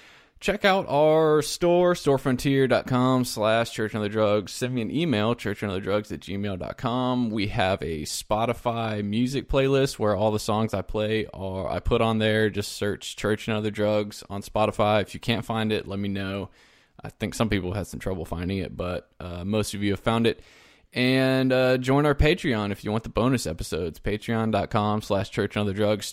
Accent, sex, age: American, male, 20-39